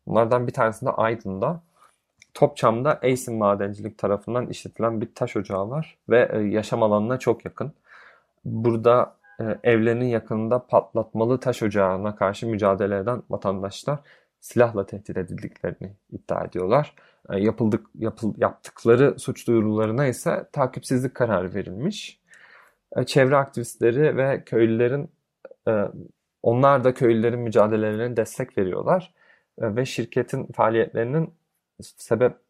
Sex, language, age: male, Turkish, 30-49